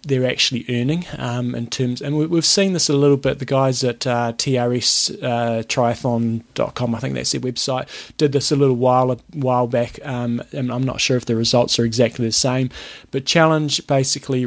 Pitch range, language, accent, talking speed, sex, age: 120-135 Hz, English, Australian, 195 wpm, male, 20-39